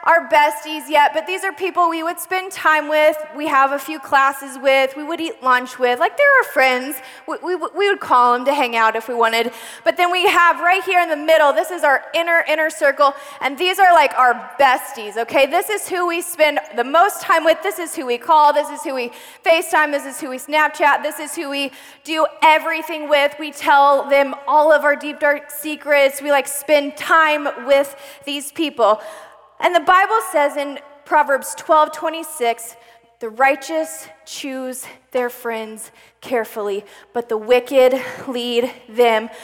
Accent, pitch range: American, 250-315 Hz